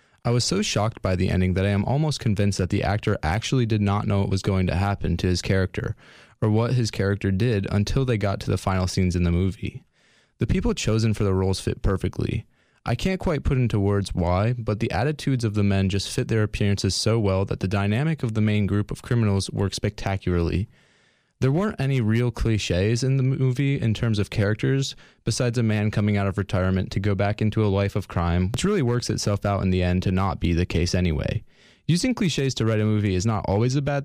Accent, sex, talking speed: American, male, 235 wpm